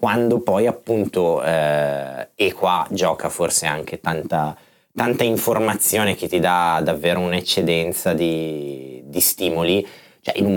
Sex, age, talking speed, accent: male, 20-39, 130 wpm, native